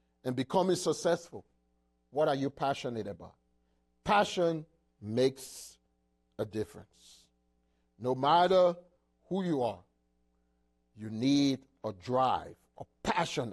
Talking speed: 100 wpm